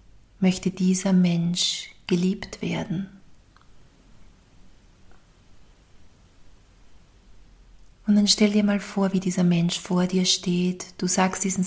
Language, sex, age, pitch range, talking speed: German, female, 40-59, 170-195 Hz, 105 wpm